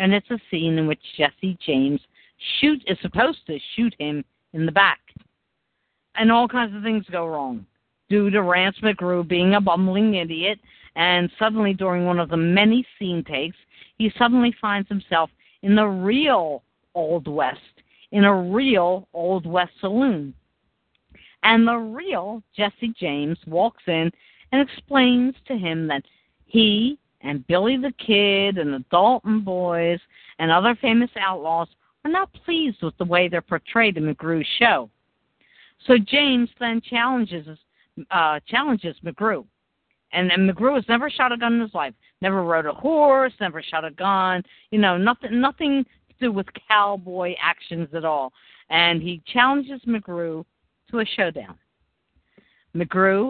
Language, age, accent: English, 50-69, American